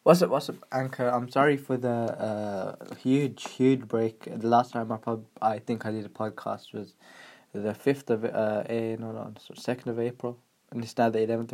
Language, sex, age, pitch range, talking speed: English, male, 20-39, 110-135 Hz, 210 wpm